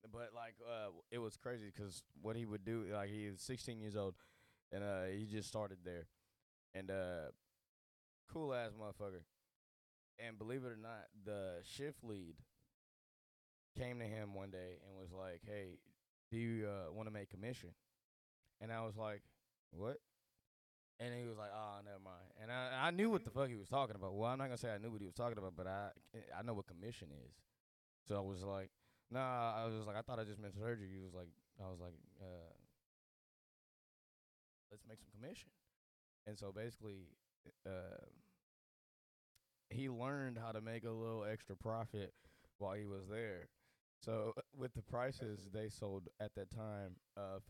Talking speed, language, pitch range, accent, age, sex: 185 wpm, English, 95-115 Hz, American, 20-39, male